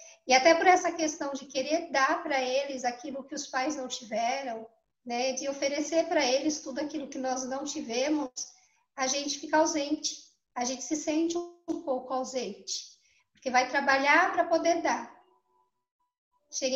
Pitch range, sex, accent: 260-320 Hz, female, Brazilian